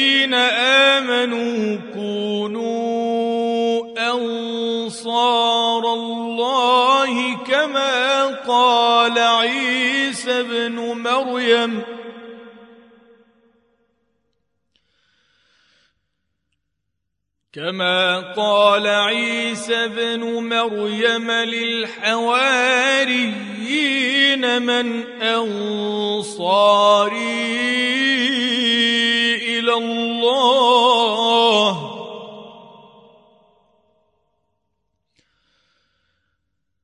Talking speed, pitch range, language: 30 wpm, 225-255 Hz, Arabic